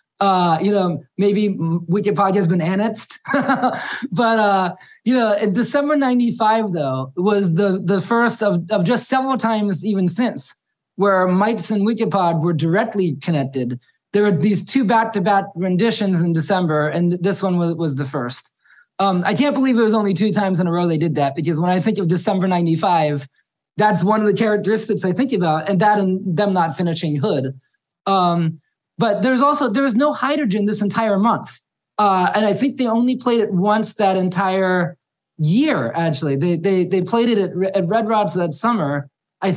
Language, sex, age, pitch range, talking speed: English, male, 20-39, 175-220 Hz, 180 wpm